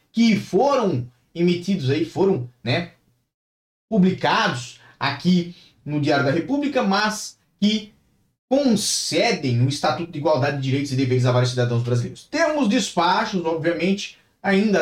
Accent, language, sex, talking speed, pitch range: Brazilian, Portuguese, male, 125 wpm, 130-210 Hz